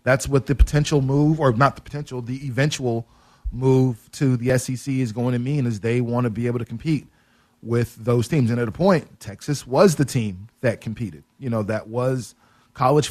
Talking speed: 205 wpm